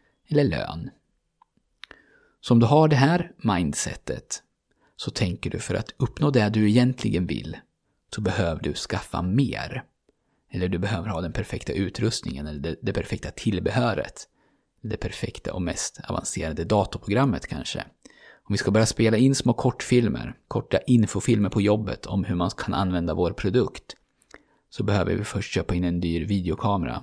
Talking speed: 160 wpm